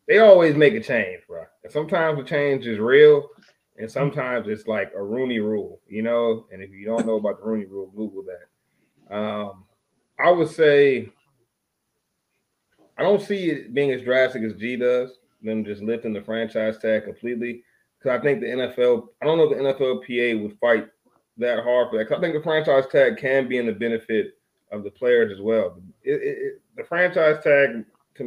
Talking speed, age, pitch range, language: 200 wpm, 30-49, 110-165 Hz, English